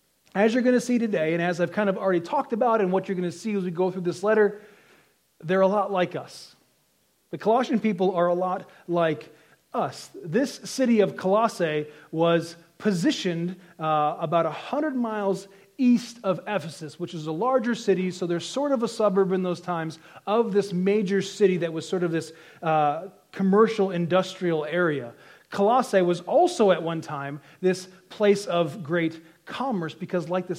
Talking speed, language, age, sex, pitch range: 180 wpm, English, 30-49, male, 170-220 Hz